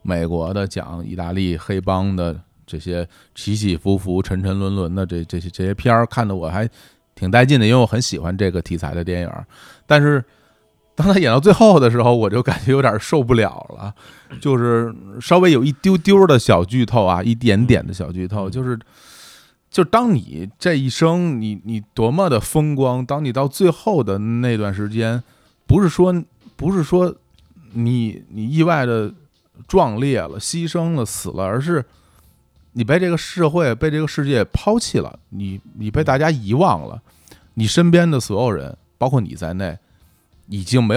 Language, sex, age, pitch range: Chinese, male, 20-39, 90-135 Hz